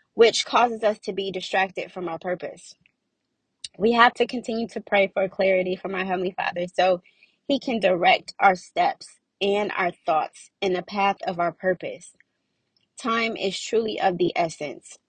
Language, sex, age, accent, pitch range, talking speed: English, female, 20-39, American, 175-200 Hz, 165 wpm